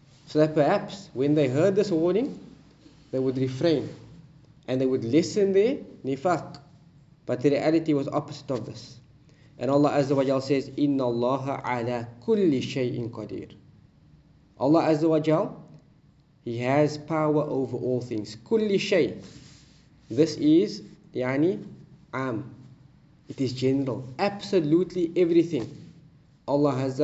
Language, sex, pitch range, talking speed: English, male, 130-155 Hz, 130 wpm